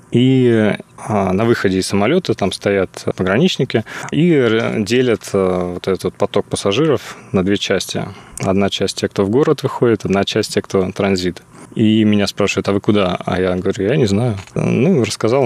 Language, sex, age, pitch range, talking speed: Russian, male, 20-39, 95-115 Hz, 165 wpm